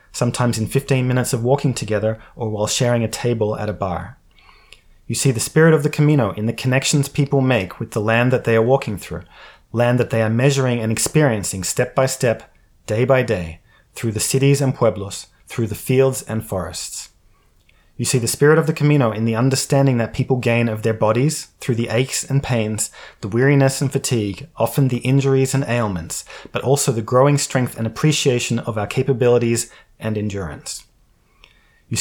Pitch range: 110-135 Hz